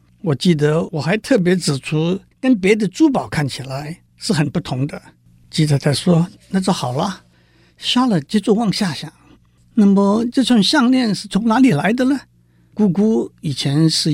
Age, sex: 60-79, male